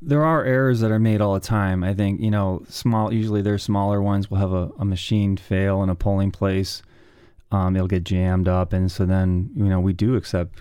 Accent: American